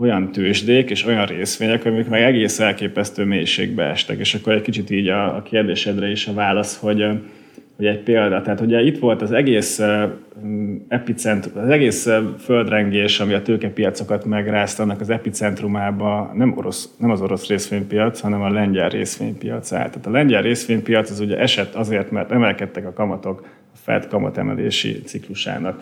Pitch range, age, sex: 100-115 Hz, 30-49, male